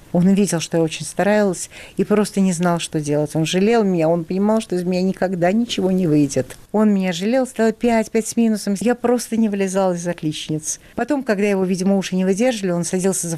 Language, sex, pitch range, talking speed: Russian, female, 160-200 Hz, 215 wpm